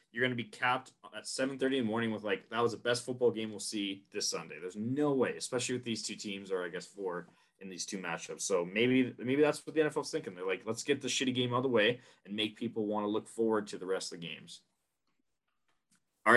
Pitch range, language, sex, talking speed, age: 100-125 Hz, English, male, 260 wpm, 20-39